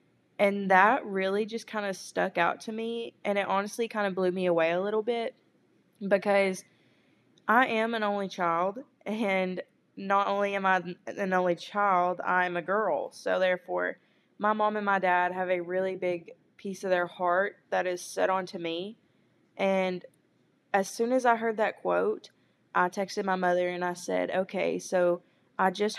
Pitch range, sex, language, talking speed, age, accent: 180-205 Hz, female, English, 180 wpm, 20-39, American